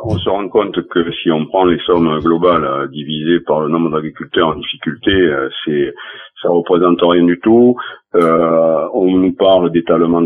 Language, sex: French, male